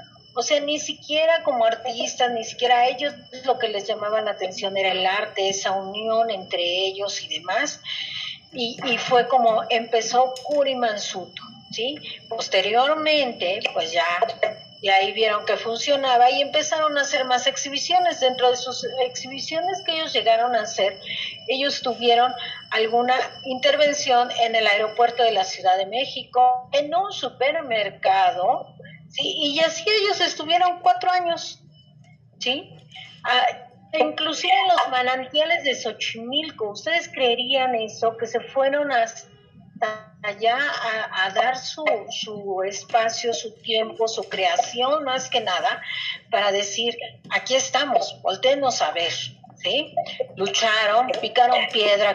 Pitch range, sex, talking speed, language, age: 210-290 Hz, female, 135 wpm, Spanish, 40-59